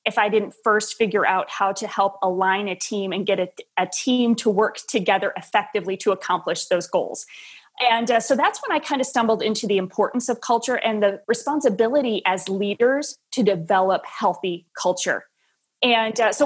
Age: 30-49